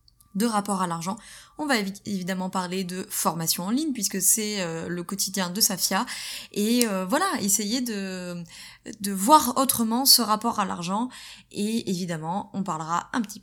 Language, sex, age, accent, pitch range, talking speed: French, female, 20-39, French, 185-230 Hz, 155 wpm